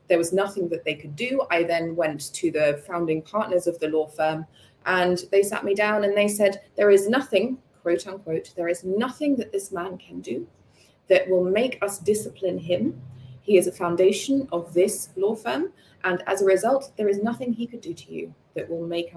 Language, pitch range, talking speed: English, 160-200 Hz, 215 wpm